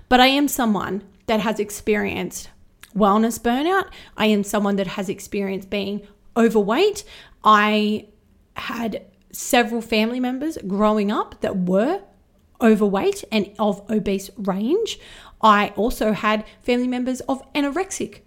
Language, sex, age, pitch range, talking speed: English, female, 30-49, 210-260 Hz, 125 wpm